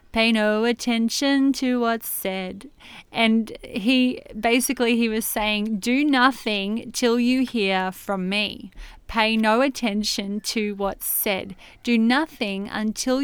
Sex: female